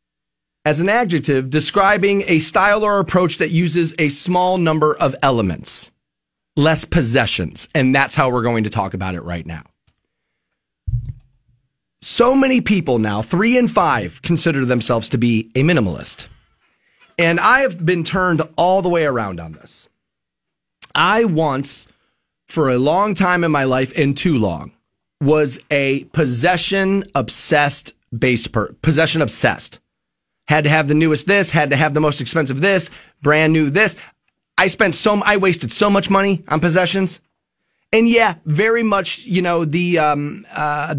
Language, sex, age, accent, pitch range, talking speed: English, male, 30-49, American, 140-200 Hz, 160 wpm